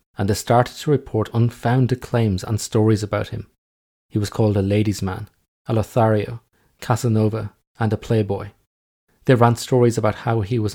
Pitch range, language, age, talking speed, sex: 100-120 Hz, English, 30-49, 165 wpm, male